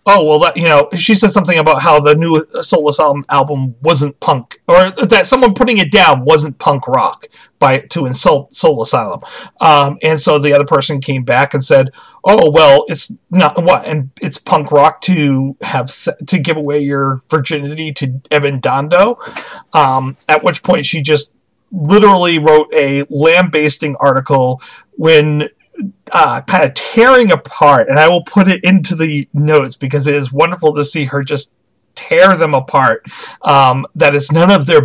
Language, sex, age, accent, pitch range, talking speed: English, male, 40-59, American, 145-185 Hz, 175 wpm